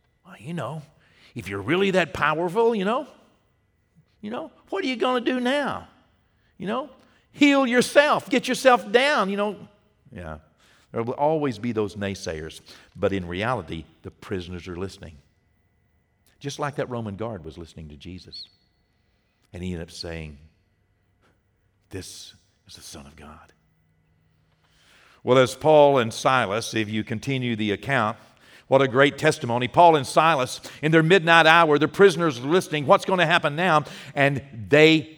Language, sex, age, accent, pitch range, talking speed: English, male, 50-69, American, 110-165 Hz, 155 wpm